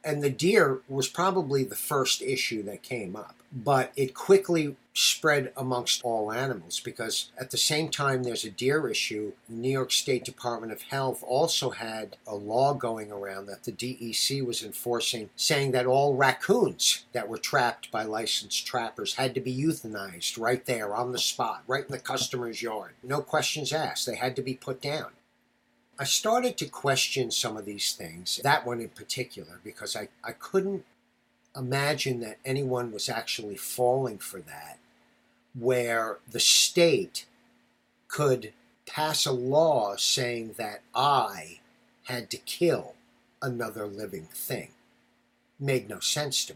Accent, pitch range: American, 115-135 Hz